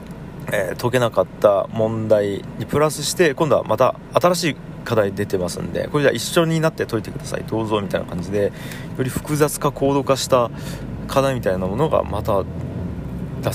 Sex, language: male, Japanese